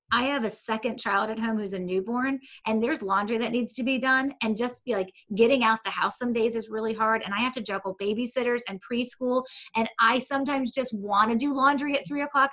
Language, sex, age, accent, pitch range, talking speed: English, female, 30-49, American, 210-275 Hz, 235 wpm